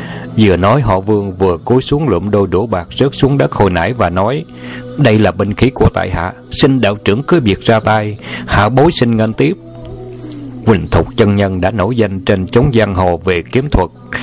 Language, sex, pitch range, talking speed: Vietnamese, male, 95-125 Hz, 215 wpm